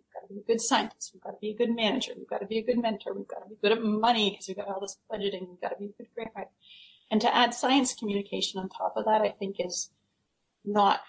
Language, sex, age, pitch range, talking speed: English, female, 30-49, 195-230 Hz, 265 wpm